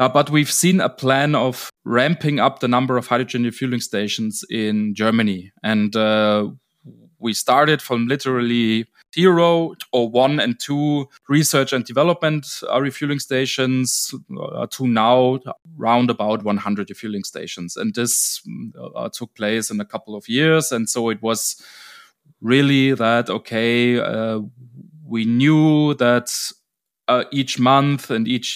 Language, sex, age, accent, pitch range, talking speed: German, male, 20-39, German, 115-140 Hz, 140 wpm